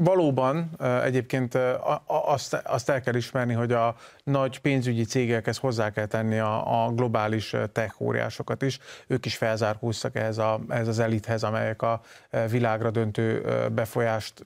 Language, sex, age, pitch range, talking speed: Hungarian, male, 30-49, 115-140 Hz, 135 wpm